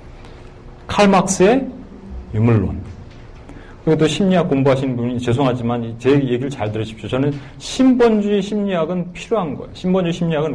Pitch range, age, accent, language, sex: 135-195 Hz, 40-59, native, Korean, male